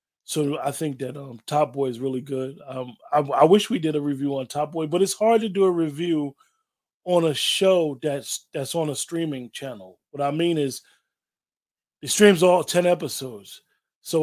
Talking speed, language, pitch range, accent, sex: 200 wpm, English, 135-165 Hz, American, male